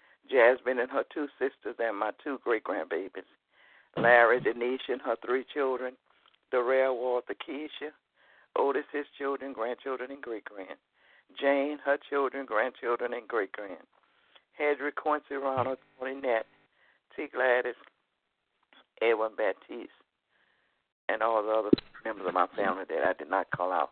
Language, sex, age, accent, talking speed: English, male, 60-79, American, 140 wpm